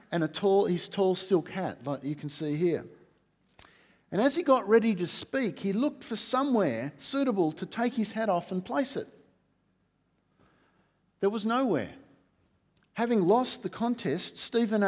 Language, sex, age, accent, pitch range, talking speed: English, male, 50-69, Australian, 140-200 Hz, 155 wpm